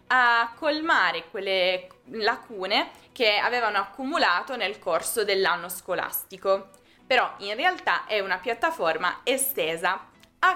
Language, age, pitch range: Italian, 20-39, 190-270 Hz